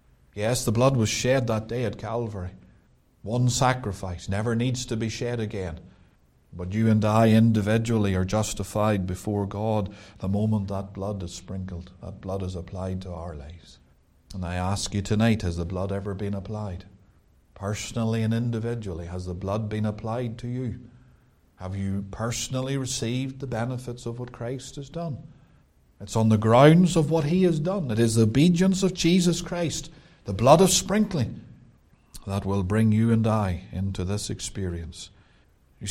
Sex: male